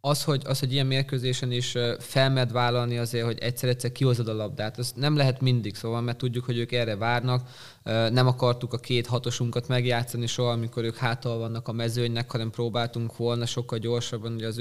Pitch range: 120-135 Hz